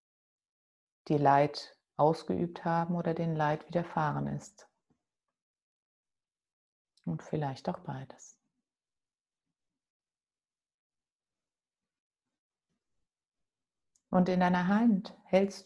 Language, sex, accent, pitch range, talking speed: German, female, German, 145-180 Hz, 70 wpm